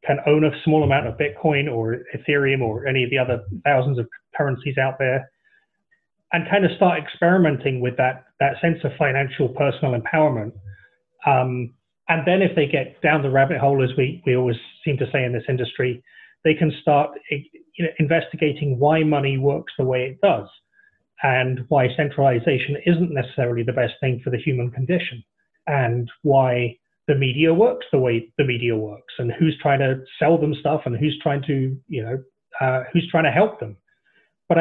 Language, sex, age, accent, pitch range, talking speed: English, male, 30-49, British, 130-160 Hz, 185 wpm